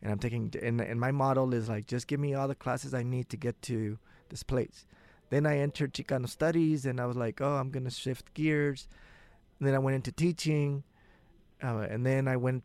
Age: 30-49